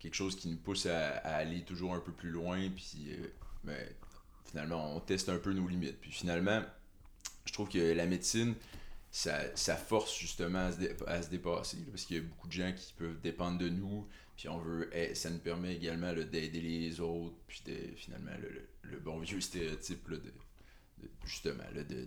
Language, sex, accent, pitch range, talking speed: French, male, French, 85-95 Hz, 215 wpm